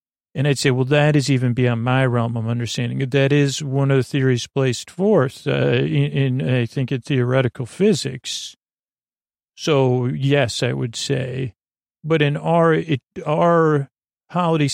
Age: 40-59